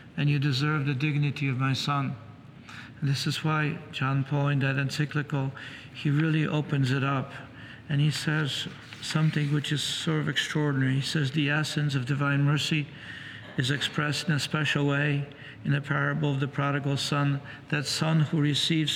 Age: 60-79